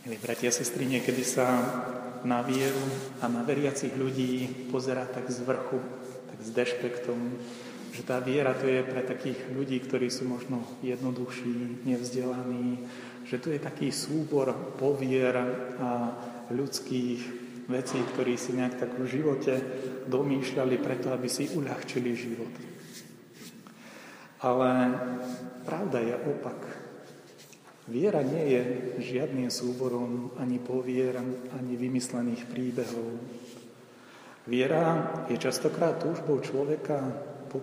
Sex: male